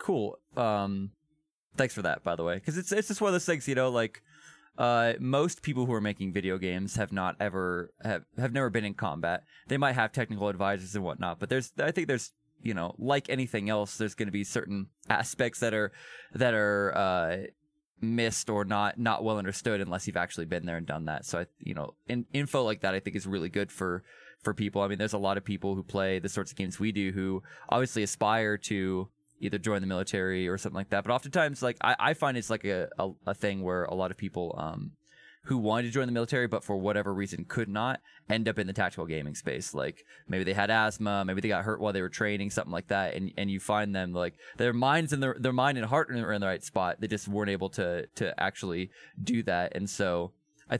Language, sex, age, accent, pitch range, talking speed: English, male, 20-39, American, 95-120 Hz, 240 wpm